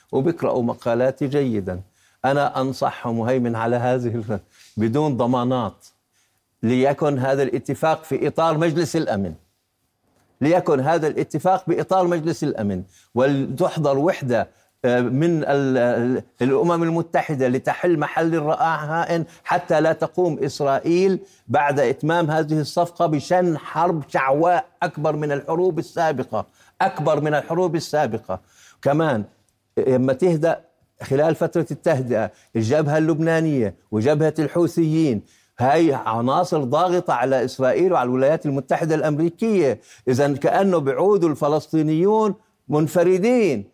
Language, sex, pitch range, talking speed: Arabic, male, 125-165 Hz, 105 wpm